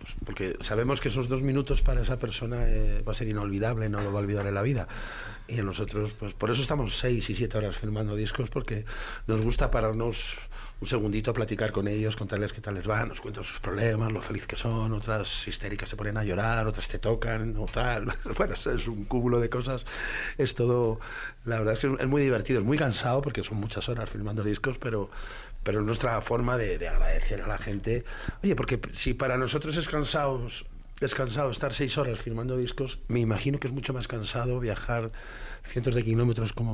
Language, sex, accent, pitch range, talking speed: Spanish, male, Spanish, 105-120 Hz, 210 wpm